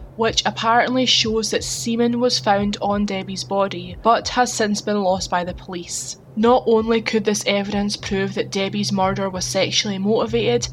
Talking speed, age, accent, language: 170 wpm, 10-29, British, English